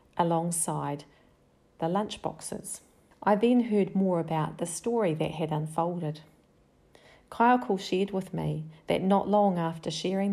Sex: female